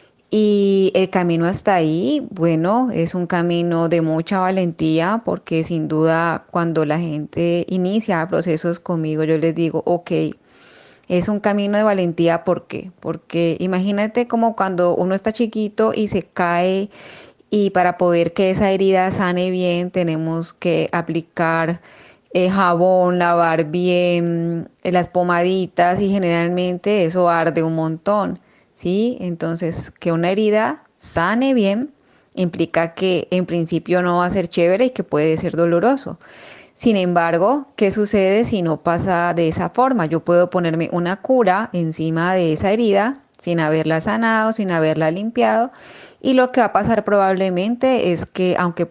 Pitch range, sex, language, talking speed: 165-200 Hz, female, Spanish, 145 wpm